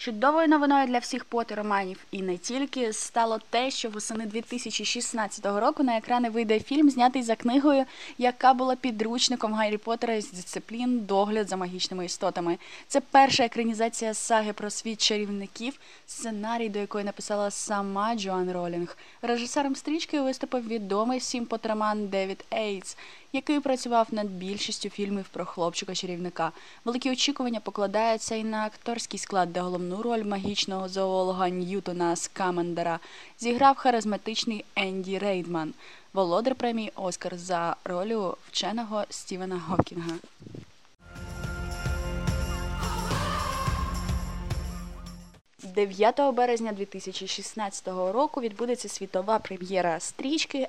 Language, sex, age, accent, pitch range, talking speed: Russian, female, 20-39, native, 190-240 Hz, 110 wpm